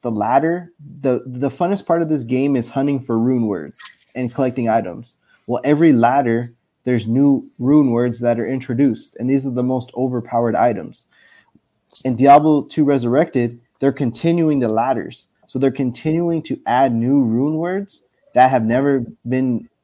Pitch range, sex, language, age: 120-145 Hz, male, English, 20-39